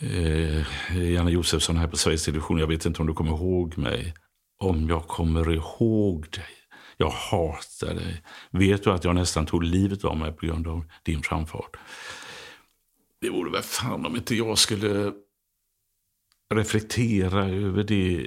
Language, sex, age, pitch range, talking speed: English, male, 60-79, 85-105 Hz, 150 wpm